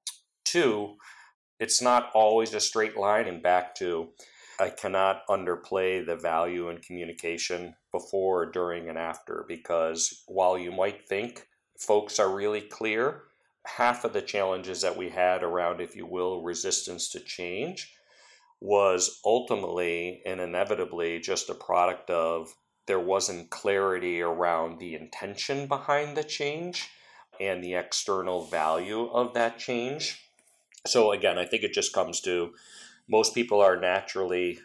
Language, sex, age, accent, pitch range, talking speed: English, male, 40-59, American, 85-110 Hz, 140 wpm